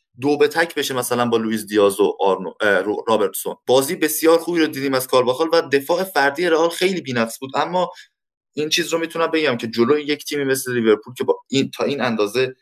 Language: Persian